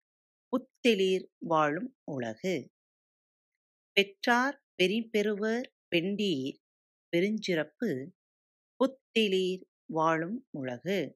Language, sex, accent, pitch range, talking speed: Tamil, female, native, 155-240 Hz, 60 wpm